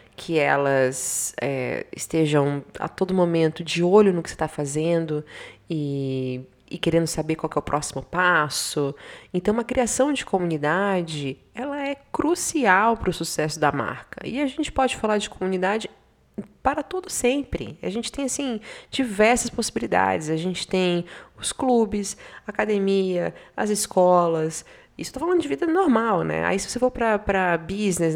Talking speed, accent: 150 wpm, Brazilian